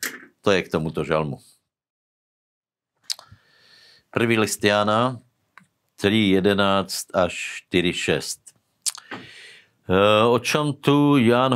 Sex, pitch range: male, 90-115 Hz